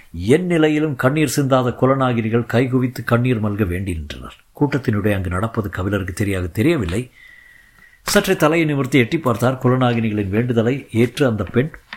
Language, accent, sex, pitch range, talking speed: Tamil, native, male, 110-145 Hz, 130 wpm